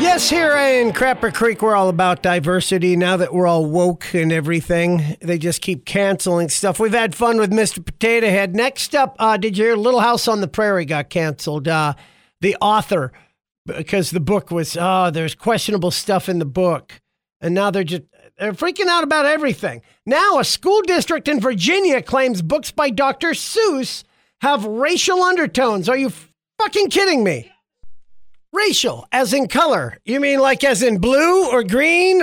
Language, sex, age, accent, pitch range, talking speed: English, male, 50-69, American, 190-300 Hz, 180 wpm